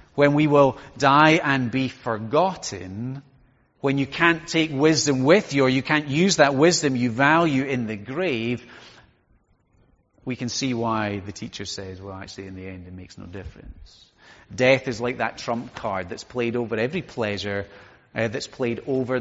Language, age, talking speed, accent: English, 30-49, 175 wpm, British